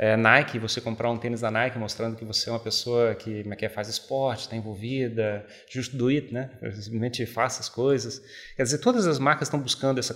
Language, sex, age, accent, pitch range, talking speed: Portuguese, male, 30-49, Brazilian, 125-150 Hz, 205 wpm